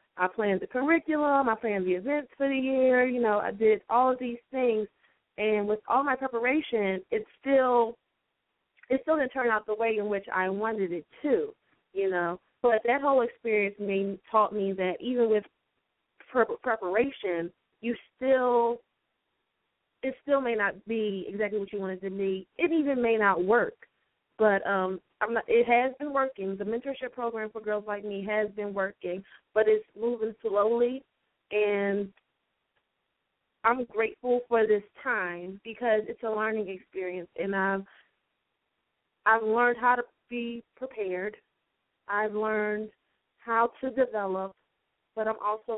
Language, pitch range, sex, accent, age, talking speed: English, 195-240 Hz, female, American, 20-39, 155 wpm